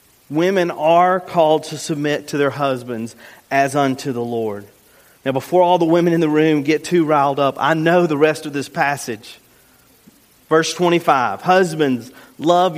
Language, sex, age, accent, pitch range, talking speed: English, male, 40-59, American, 130-165 Hz, 165 wpm